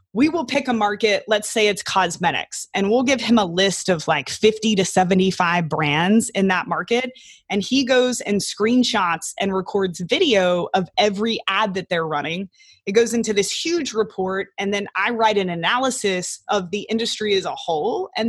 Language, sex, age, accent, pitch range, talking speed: English, female, 20-39, American, 185-235 Hz, 185 wpm